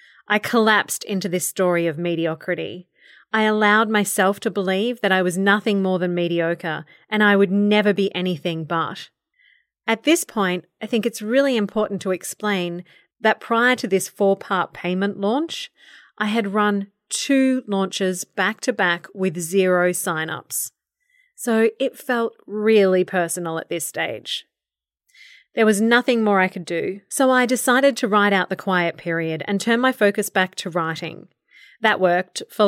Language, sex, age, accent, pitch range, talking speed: English, female, 30-49, Australian, 180-220 Hz, 160 wpm